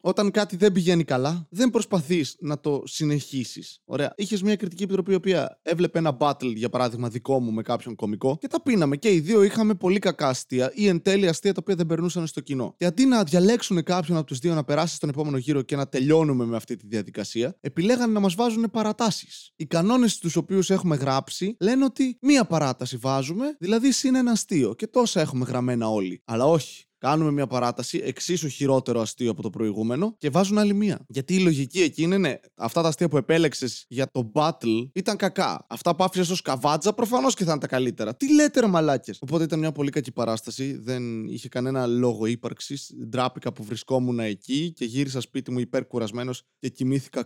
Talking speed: 205 wpm